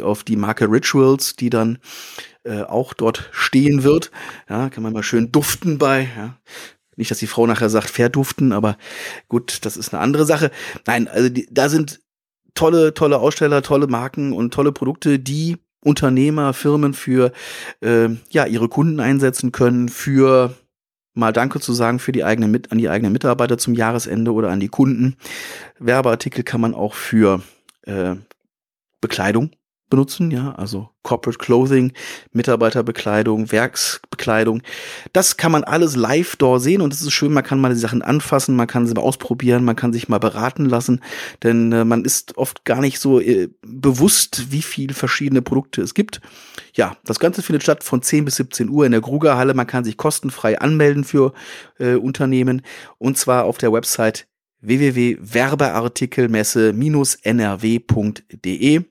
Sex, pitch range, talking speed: male, 115-140 Hz, 155 wpm